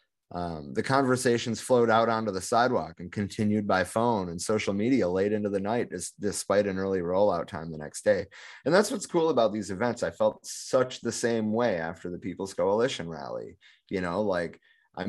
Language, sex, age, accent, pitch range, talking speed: English, male, 30-49, American, 85-105 Hz, 200 wpm